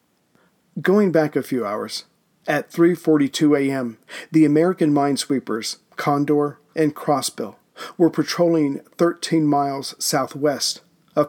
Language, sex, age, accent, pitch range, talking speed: English, male, 50-69, American, 145-165 Hz, 105 wpm